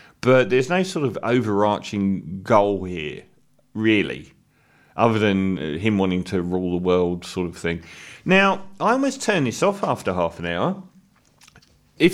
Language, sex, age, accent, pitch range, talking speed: English, male, 40-59, British, 105-140 Hz, 155 wpm